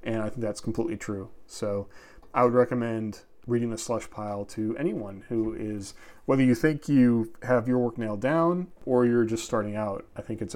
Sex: male